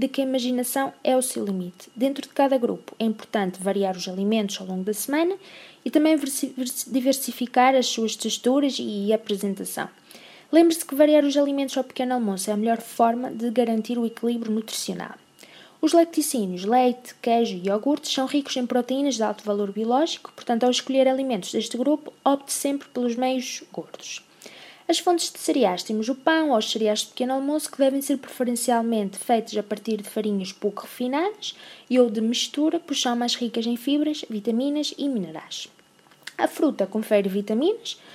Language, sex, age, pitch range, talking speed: Portuguese, female, 20-39, 215-275 Hz, 175 wpm